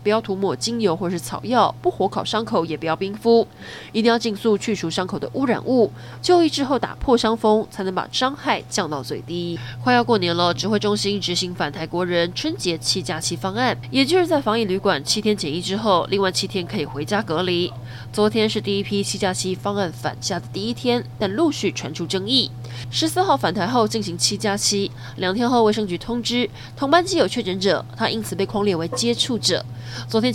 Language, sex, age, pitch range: Chinese, female, 20-39, 155-225 Hz